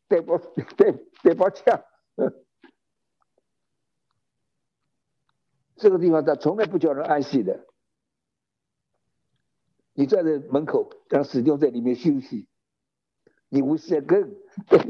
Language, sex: Chinese, male